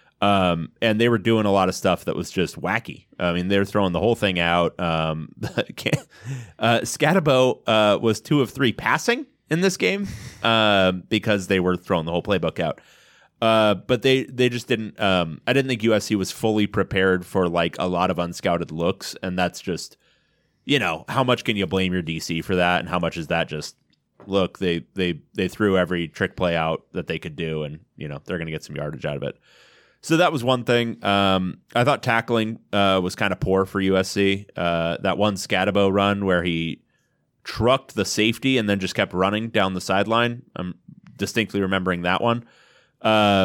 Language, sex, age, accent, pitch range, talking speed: English, male, 30-49, American, 85-115 Hz, 205 wpm